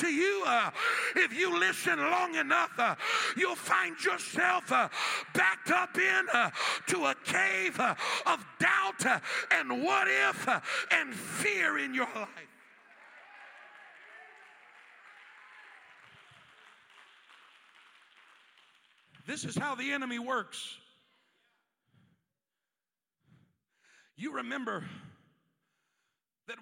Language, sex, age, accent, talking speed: English, male, 60-79, American, 95 wpm